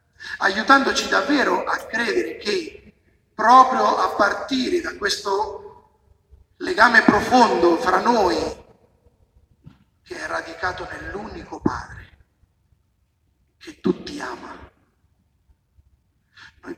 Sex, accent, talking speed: male, native, 80 wpm